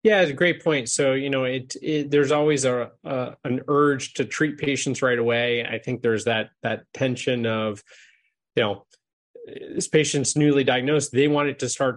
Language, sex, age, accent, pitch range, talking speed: English, male, 30-49, American, 115-140 Hz, 190 wpm